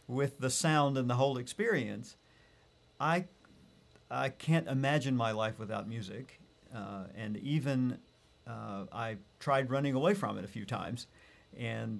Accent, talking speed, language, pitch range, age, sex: American, 145 wpm, English, 105-135 Hz, 50-69, male